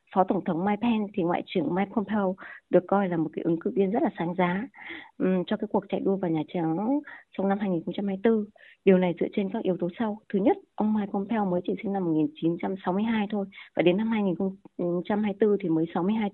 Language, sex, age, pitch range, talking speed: Vietnamese, female, 20-39, 185-245 Hz, 220 wpm